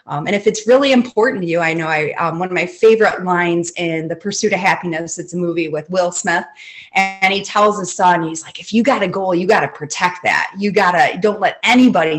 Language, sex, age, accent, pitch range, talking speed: English, female, 30-49, American, 170-230 Hz, 250 wpm